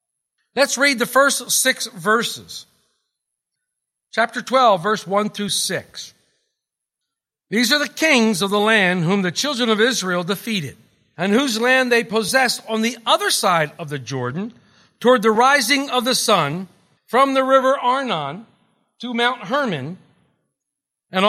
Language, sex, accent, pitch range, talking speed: English, male, American, 195-250 Hz, 145 wpm